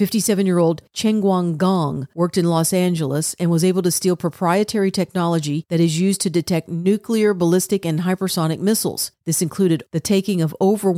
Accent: American